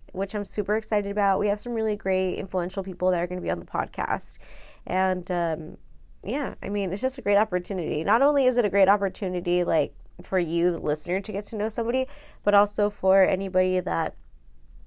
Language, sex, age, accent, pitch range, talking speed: English, female, 20-39, American, 170-210 Hz, 210 wpm